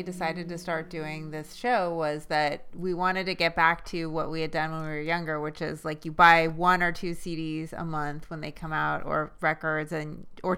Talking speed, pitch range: 235 wpm, 155-185 Hz